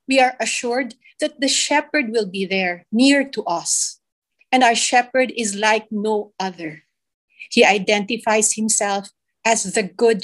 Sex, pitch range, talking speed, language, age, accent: female, 210-275 Hz, 145 wpm, English, 50-69, Filipino